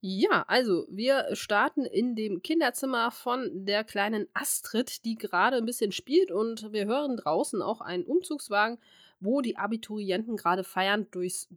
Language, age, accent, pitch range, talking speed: German, 20-39, German, 190-255 Hz, 150 wpm